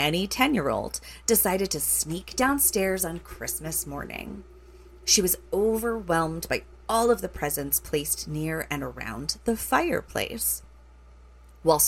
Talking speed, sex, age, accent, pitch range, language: 120 wpm, female, 30-49, American, 145-190 Hz, English